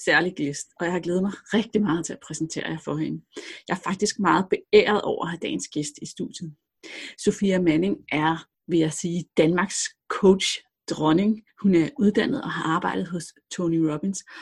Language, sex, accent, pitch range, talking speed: Danish, female, native, 165-205 Hz, 185 wpm